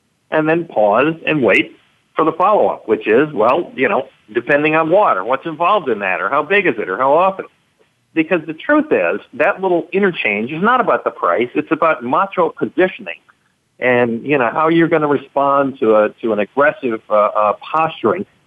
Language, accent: English, American